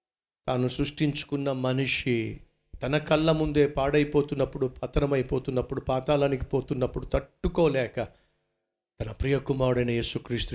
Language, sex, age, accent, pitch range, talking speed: Telugu, male, 50-69, native, 120-185 Hz, 80 wpm